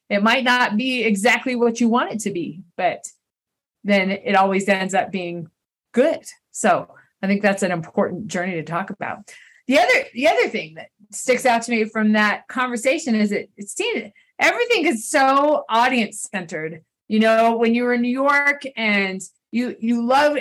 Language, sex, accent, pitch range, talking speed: English, female, American, 205-265 Hz, 190 wpm